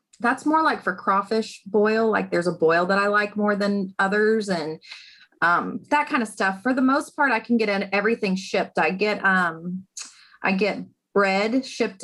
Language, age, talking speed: English, 30-49, 195 wpm